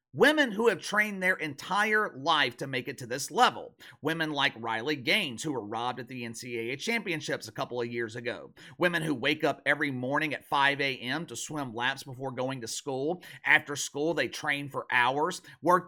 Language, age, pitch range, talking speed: English, 30-49, 140-210 Hz, 195 wpm